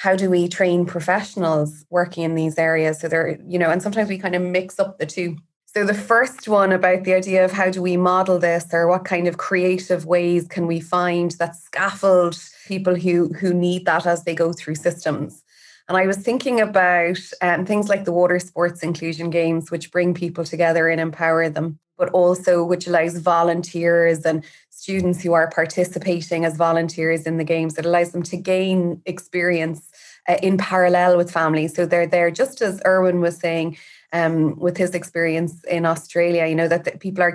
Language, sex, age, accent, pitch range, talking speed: English, female, 20-39, Irish, 165-185 Hz, 195 wpm